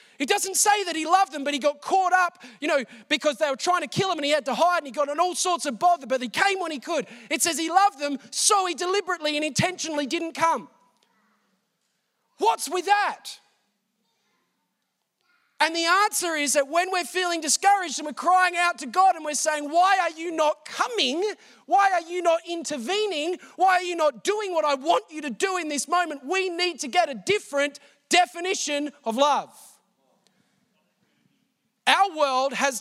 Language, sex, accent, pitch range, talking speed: English, male, Australian, 230-345 Hz, 200 wpm